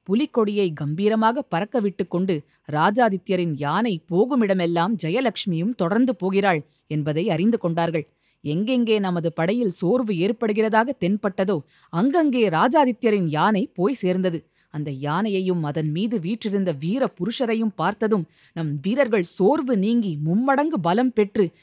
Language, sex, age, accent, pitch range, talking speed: Tamil, female, 20-39, native, 170-225 Hz, 110 wpm